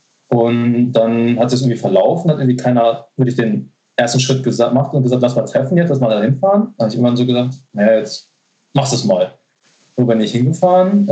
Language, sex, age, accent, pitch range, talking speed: German, male, 20-39, German, 125-160 Hz, 210 wpm